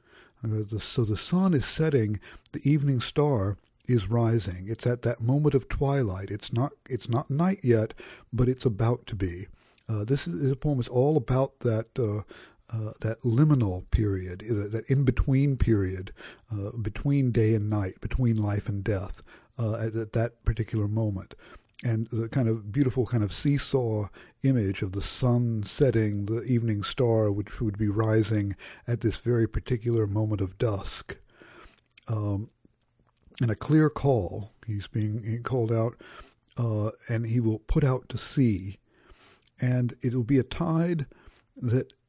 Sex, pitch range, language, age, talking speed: male, 110-130 Hz, English, 60-79, 165 wpm